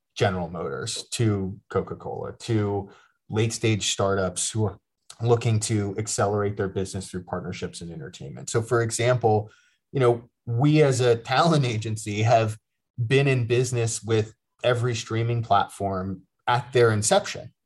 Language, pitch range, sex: English, 105-130 Hz, male